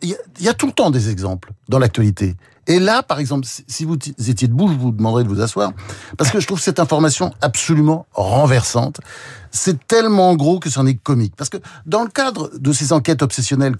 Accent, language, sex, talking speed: French, French, male, 210 wpm